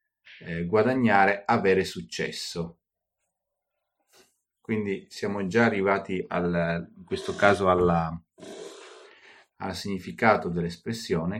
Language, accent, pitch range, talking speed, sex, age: Italian, native, 85-100 Hz, 80 wpm, male, 40-59